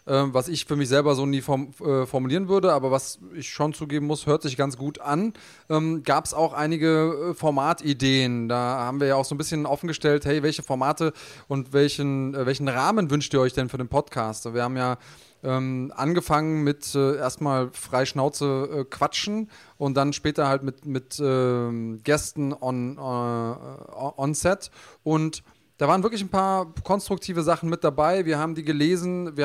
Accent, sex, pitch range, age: German, male, 135-160 Hz, 20-39